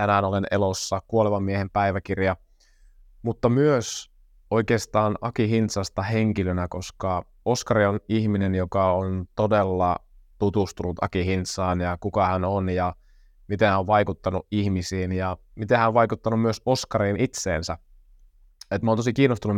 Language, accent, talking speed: Finnish, native, 140 wpm